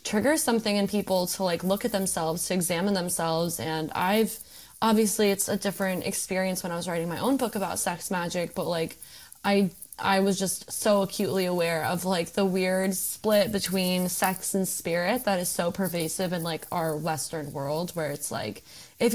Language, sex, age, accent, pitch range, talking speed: English, female, 20-39, American, 175-215 Hz, 190 wpm